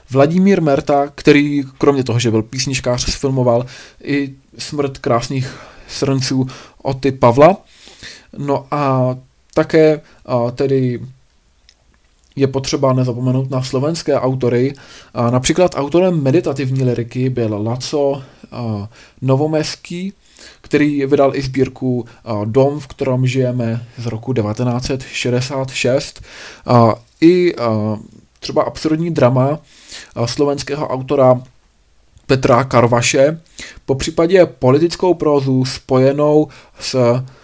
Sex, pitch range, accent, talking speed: male, 125-145 Hz, native, 100 wpm